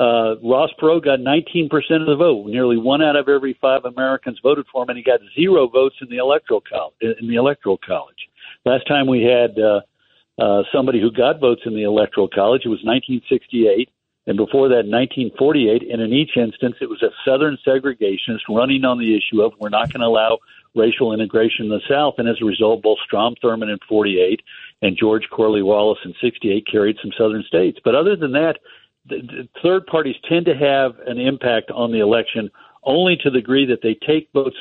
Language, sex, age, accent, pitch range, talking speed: English, male, 60-79, American, 110-140 Hz, 205 wpm